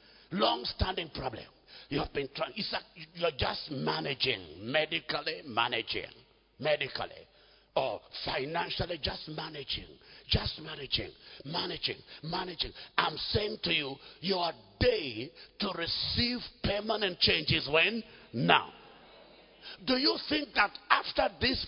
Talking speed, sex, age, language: 115 wpm, male, 60-79, English